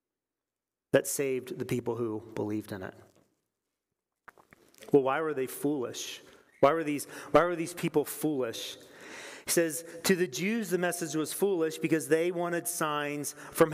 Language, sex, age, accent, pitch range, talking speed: English, male, 40-59, American, 140-175 Hz, 155 wpm